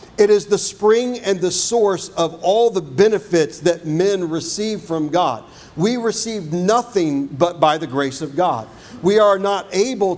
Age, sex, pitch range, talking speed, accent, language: 50-69, male, 160-200 Hz, 170 wpm, American, English